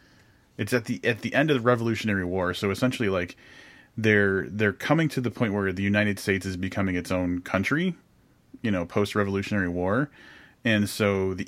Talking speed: 190 wpm